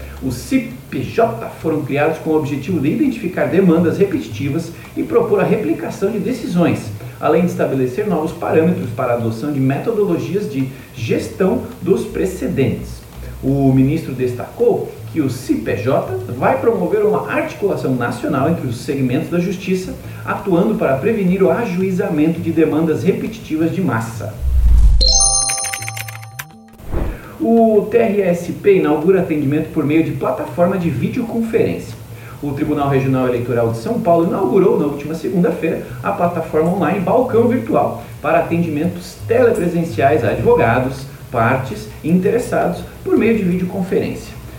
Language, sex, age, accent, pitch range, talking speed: Portuguese, male, 40-59, Brazilian, 130-190 Hz, 130 wpm